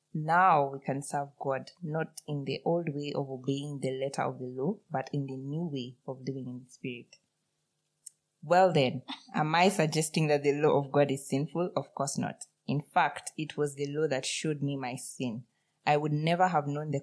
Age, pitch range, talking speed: 20-39, 135-160 Hz, 210 wpm